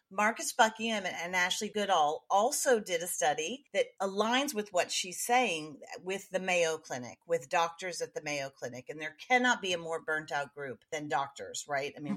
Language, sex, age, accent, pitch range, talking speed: English, female, 40-59, American, 165-235 Hz, 190 wpm